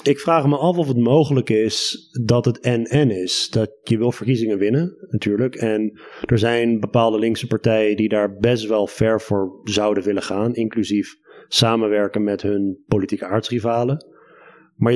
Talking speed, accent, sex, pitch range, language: 160 wpm, Dutch, male, 110-130 Hz, Dutch